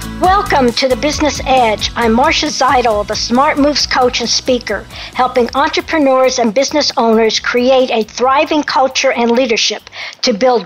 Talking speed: 150 wpm